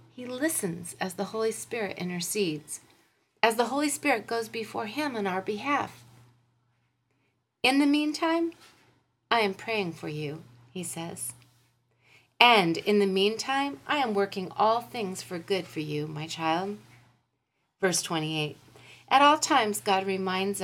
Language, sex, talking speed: English, female, 140 wpm